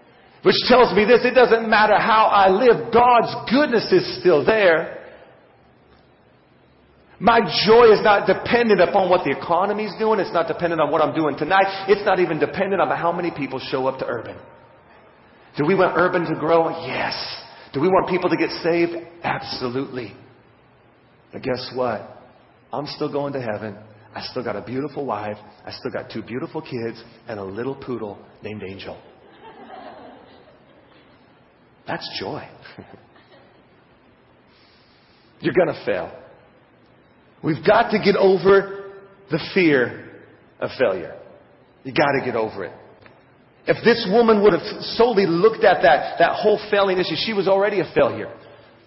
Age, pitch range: 40-59, 135-205 Hz